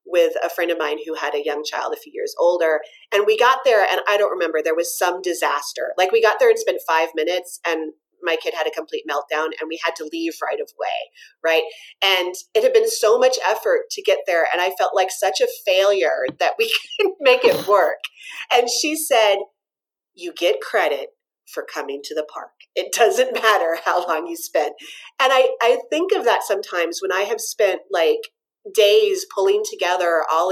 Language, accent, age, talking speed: English, American, 30-49, 210 wpm